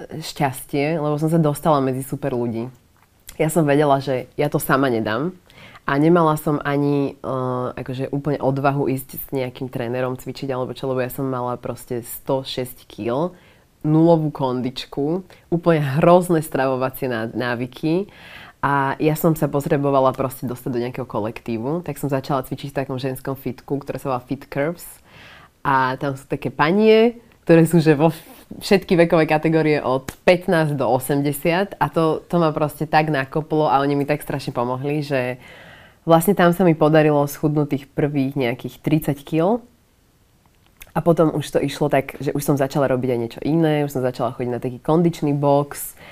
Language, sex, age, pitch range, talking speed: Slovak, female, 20-39, 130-155 Hz, 170 wpm